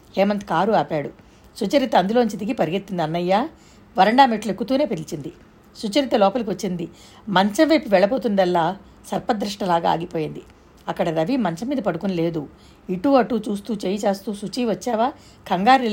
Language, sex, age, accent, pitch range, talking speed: Telugu, female, 60-79, native, 170-220 Hz, 125 wpm